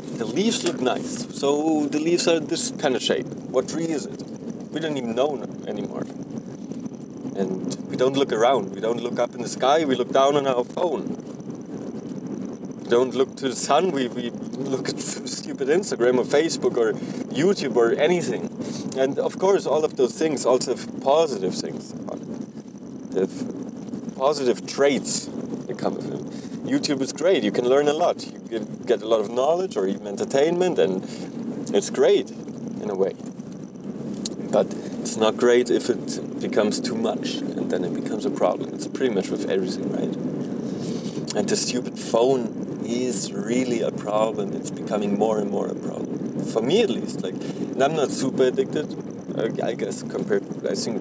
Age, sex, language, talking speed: 30-49, male, English, 180 wpm